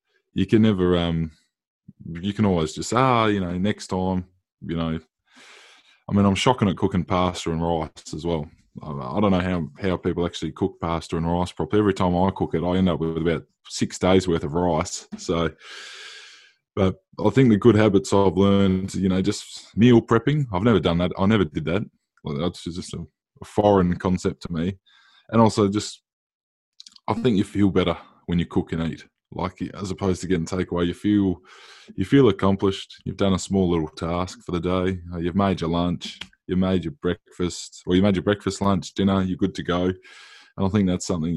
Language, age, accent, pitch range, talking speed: English, 20-39, Australian, 90-100 Hz, 200 wpm